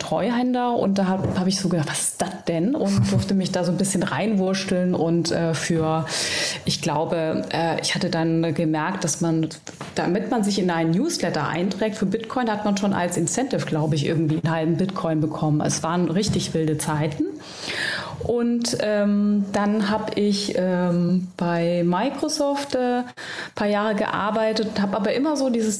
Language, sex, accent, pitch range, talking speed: German, female, German, 165-215 Hz, 175 wpm